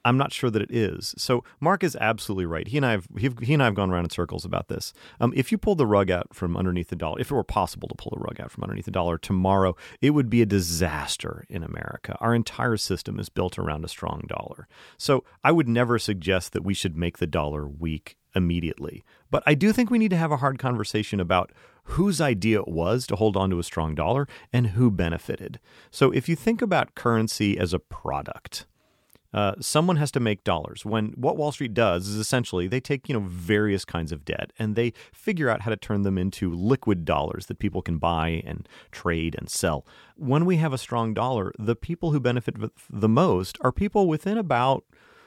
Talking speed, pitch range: 225 wpm, 95-140 Hz